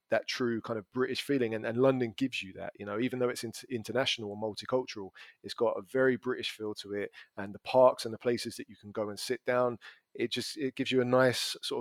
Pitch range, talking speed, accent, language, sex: 110-125 Hz, 260 wpm, British, English, male